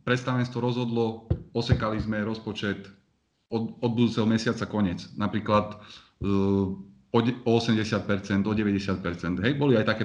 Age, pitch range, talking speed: 30-49, 100-115 Hz, 105 wpm